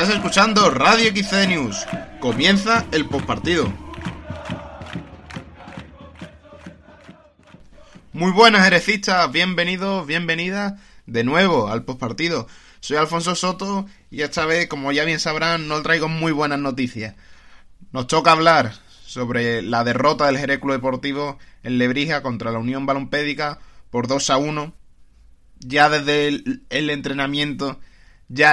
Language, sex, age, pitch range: Spanish, male, 20-39, 125-150 Hz